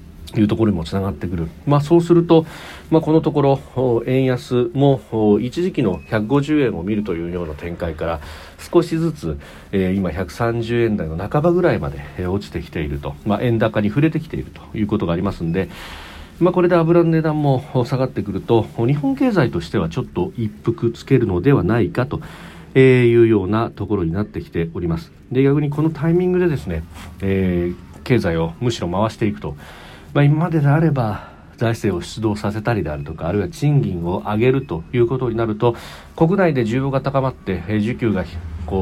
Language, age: Japanese, 40-59